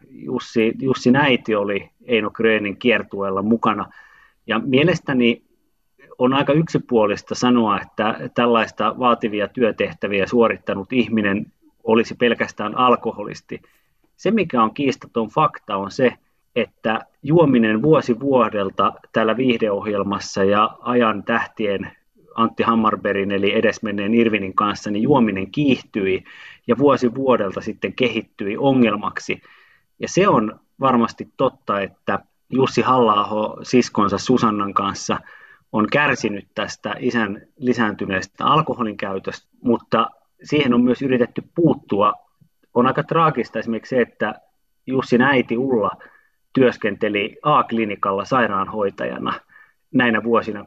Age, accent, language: 30-49, native, Finnish